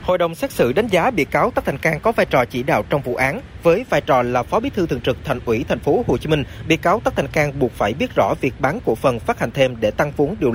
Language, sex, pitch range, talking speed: Vietnamese, male, 130-170 Hz, 315 wpm